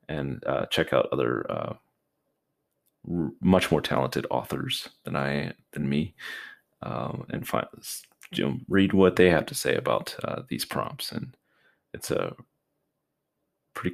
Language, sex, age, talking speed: English, male, 30-49, 140 wpm